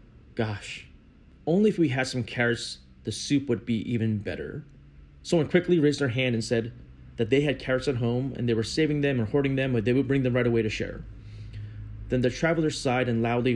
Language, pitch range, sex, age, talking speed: English, 105-135 Hz, male, 30-49, 215 wpm